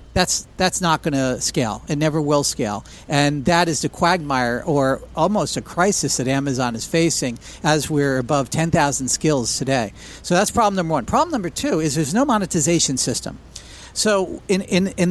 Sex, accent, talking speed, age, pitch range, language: male, American, 185 wpm, 50-69, 135-170 Hz, English